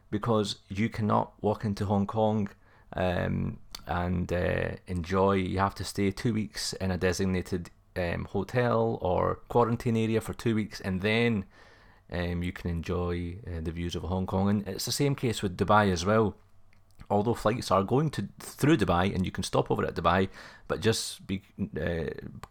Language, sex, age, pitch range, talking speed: English, male, 30-49, 90-110 Hz, 180 wpm